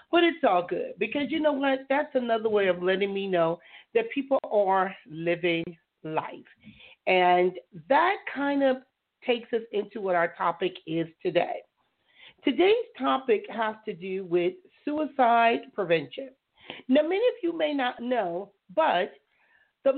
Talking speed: 145 wpm